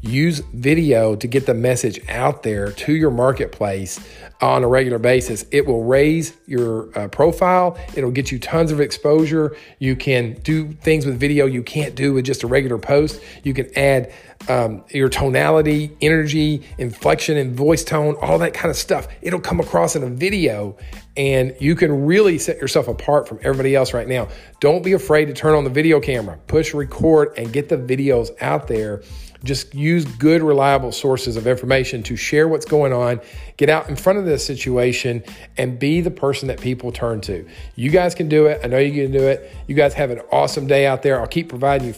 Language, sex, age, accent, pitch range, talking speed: English, male, 40-59, American, 120-150 Hz, 205 wpm